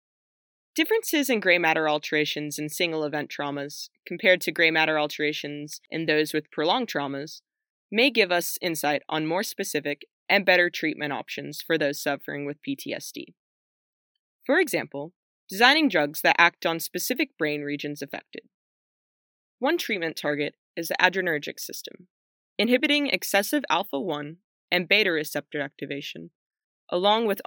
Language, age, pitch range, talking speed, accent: English, 20-39, 150-225 Hz, 135 wpm, American